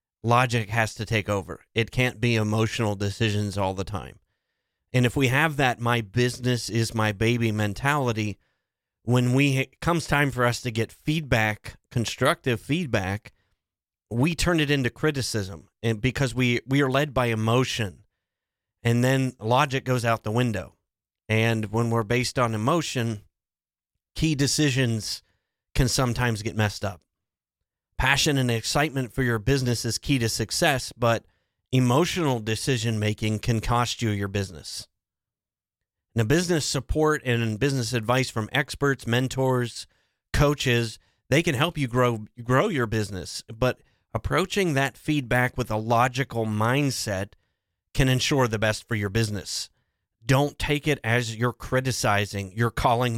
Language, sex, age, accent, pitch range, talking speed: English, male, 30-49, American, 105-130 Hz, 145 wpm